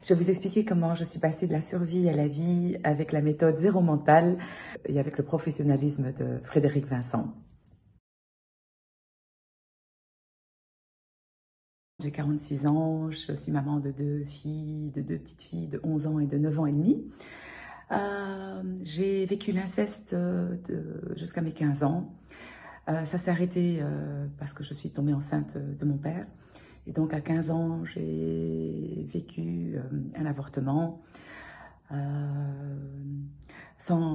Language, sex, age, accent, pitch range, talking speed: French, female, 40-59, French, 140-165 Hz, 145 wpm